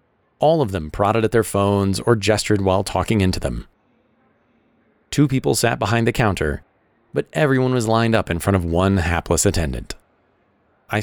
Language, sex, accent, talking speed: English, male, American, 170 wpm